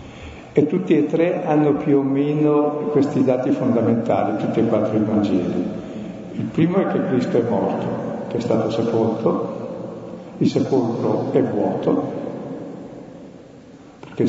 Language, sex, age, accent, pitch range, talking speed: Italian, male, 50-69, native, 125-150 Hz, 135 wpm